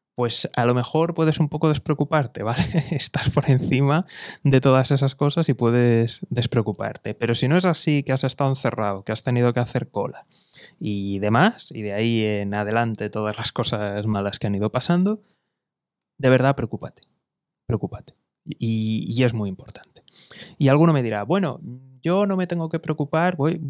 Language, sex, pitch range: Spanish, male, 115-160 Hz